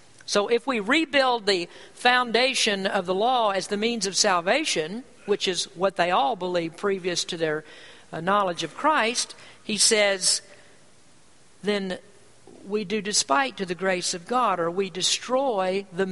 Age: 50-69